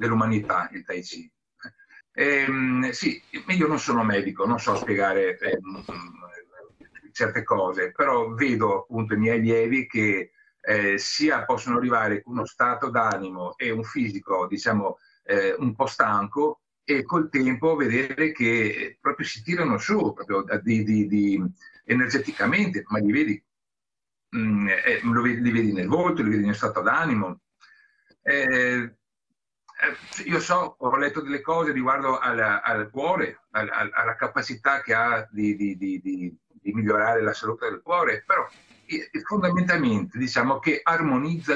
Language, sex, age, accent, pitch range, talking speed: Italian, male, 50-69, native, 110-165 Hz, 120 wpm